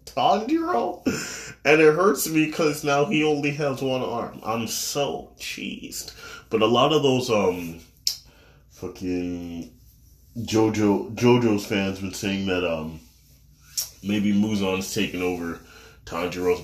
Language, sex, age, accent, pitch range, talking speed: English, male, 20-39, American, 85-110 Hz, 125 wpm